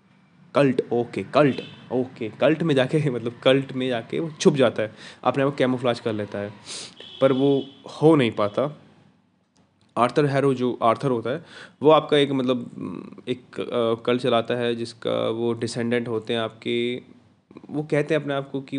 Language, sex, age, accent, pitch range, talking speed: Hindi, male, 20-39, native, 120-145 Hz, 175 wpm